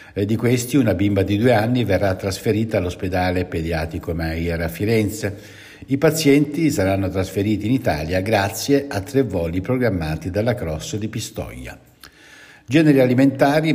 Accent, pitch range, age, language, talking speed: native, 95-130 Hz, 60-79, Italian, 135 wpm